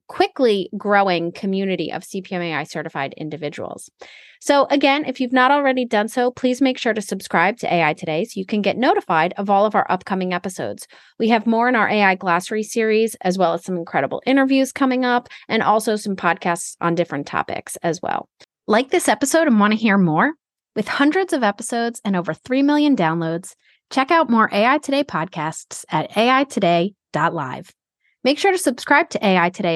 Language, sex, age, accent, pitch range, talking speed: English, female, 30-49, American, 185-260 Hz, 185 wpm